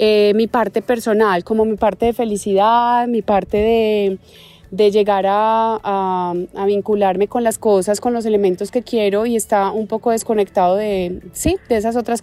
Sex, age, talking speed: female, 20-39, 175 wpm